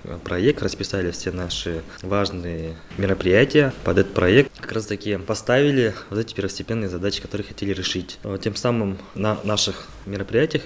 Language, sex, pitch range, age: Russian, male, 95-115 Hz, 20-39